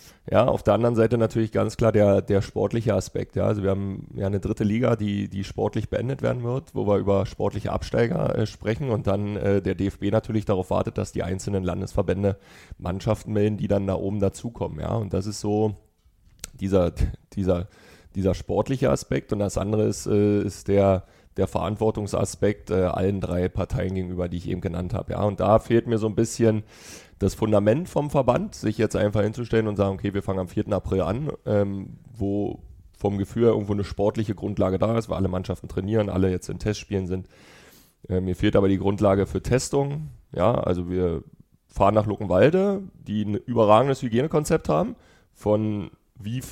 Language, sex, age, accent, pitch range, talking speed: German, male, 30-49, German, 95-115 Hz, 190 wpm